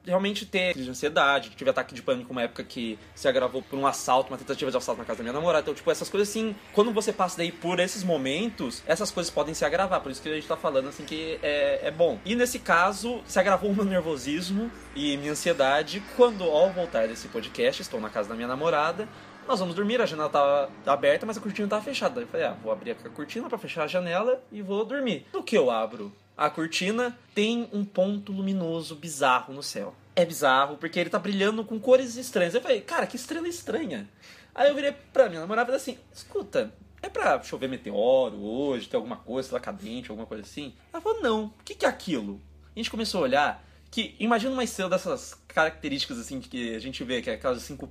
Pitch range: 145-235 Hz